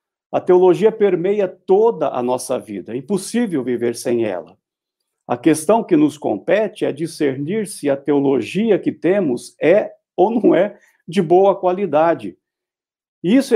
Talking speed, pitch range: 145 wpm, 145-205 Hz